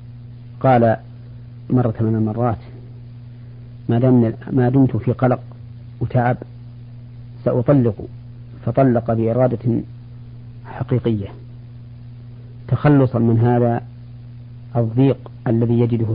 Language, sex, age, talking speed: Arabic, female, 40-59, 75 wpm